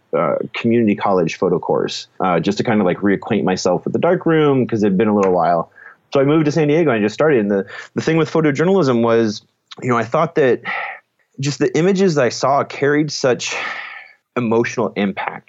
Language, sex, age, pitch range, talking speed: English, male, 30-49, 105-135 Hz, 210 wpm